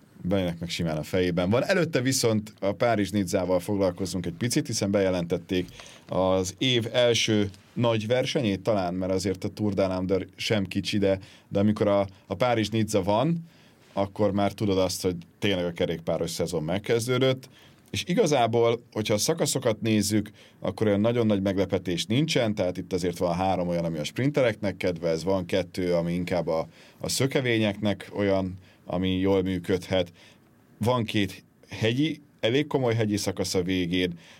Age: 30-49